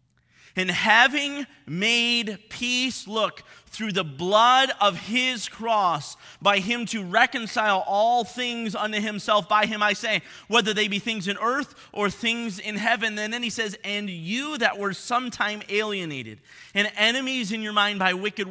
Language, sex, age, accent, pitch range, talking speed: English, male, 30-49, American, 190-240 Hz, 160 wpm